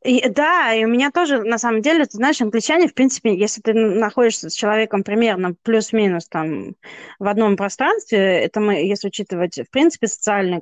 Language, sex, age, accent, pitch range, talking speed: Russian, female, 20-39, native, 180-235 Hz, 180 wpm